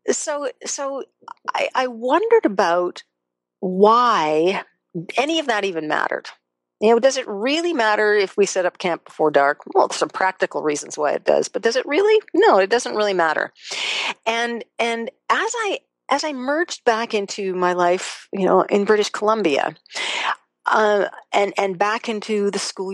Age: 40-59